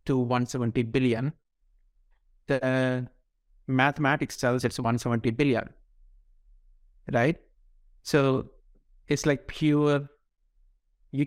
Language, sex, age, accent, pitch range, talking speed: English, male, 60-79, Indian, 120-135 Hz, 85 wpm